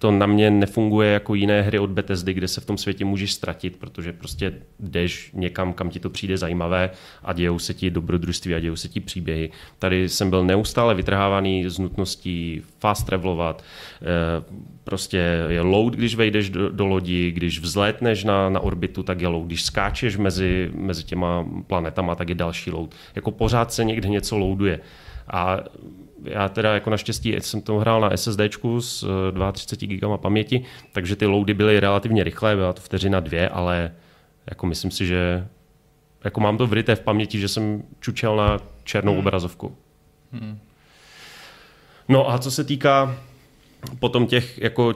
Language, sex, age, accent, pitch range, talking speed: Czech, male, 30-49, native, 90-110 Hz, 165 wpm